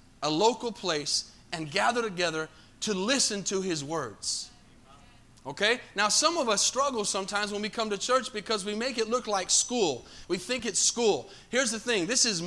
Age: 30-49